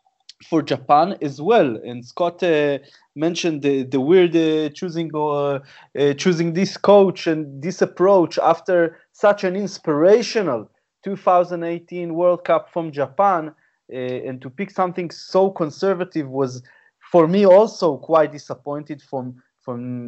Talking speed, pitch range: 135 wpm, 150-185 Hz